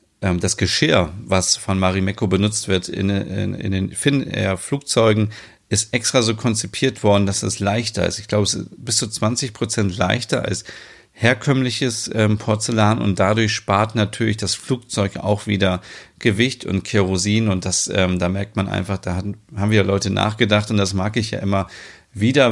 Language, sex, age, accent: German, male, 40-59, German